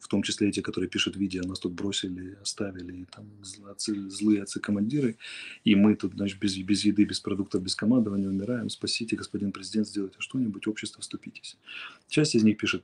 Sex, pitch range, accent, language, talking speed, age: male, 95-110 Hz, native, Russian, 170 wpm, 30-49